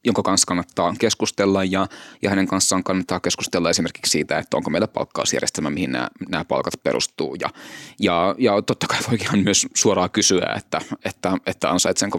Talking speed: 170 wpm